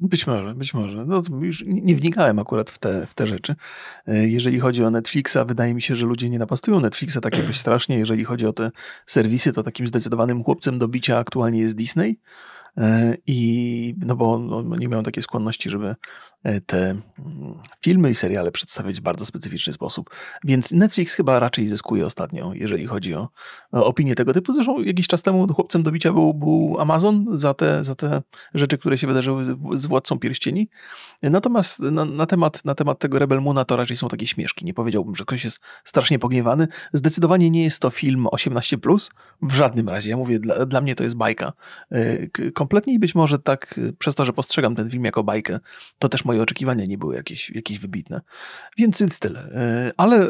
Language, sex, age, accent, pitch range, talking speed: Polish, male, 30-49, native, 115-160 Hz, 185 wpm